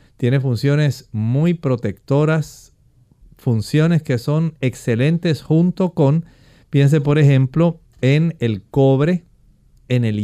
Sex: male